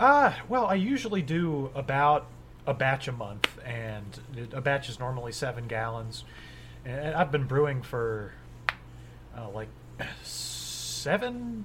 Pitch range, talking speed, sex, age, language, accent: 115-140 Hz, 125 wpm, male, 30-49, English, American